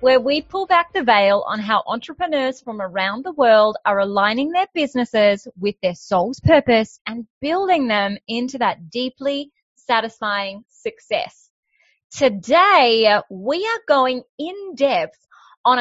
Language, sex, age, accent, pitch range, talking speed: English, female, 20-39, Australian, 225-305 Hz, 135 wpm